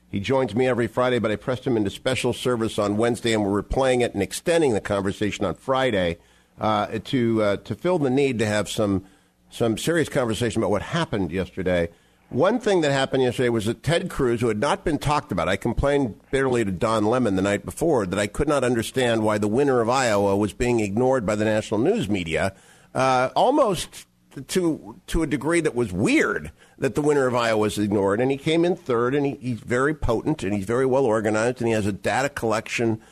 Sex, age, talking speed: male, 50-69, 220 wpm